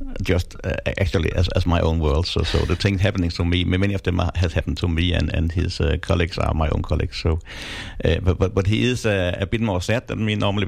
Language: English